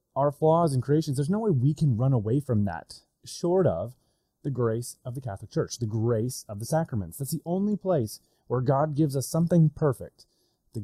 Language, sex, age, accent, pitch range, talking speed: English, male, 30-49, American, 115-150 Hz, 205 wpm